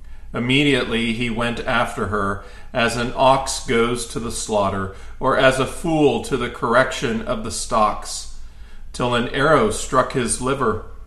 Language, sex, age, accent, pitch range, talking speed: English, male, 40-59, American, 100-140 Hz, 150 wpm